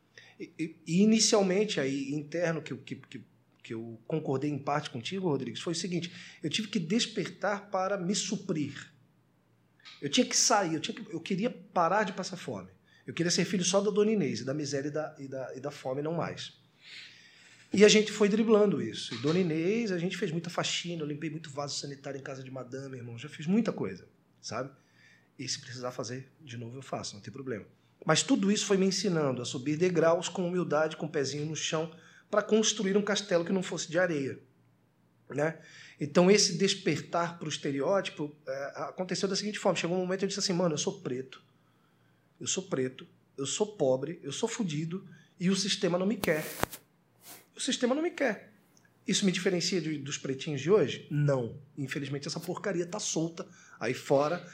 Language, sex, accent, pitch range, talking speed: Portuguese, male, Brazilian, 145-195 Hz, 200 wpm